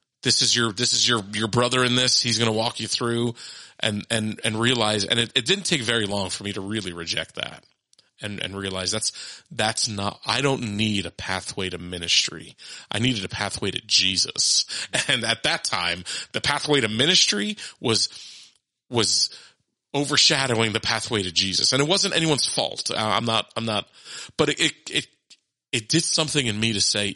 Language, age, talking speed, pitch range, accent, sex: English, 30-49, 190 wpm, 100-125 Hz, American, male